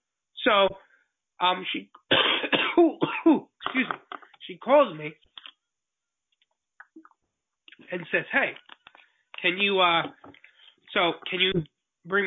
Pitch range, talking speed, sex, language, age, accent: 175-255 Hz, 100 wpm, male, English, 20-39, American